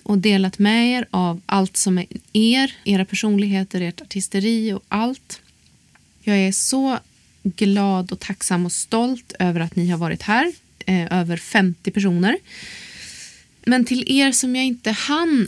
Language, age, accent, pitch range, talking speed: Swedish, 30-49, native, 190-235 Hz, 150 wpm